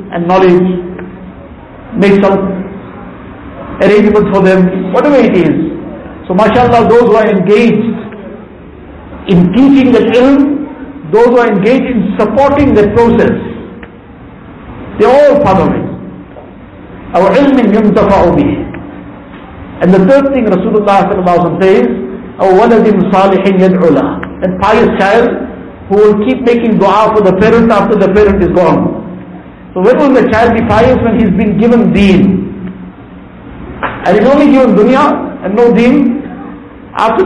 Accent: Indian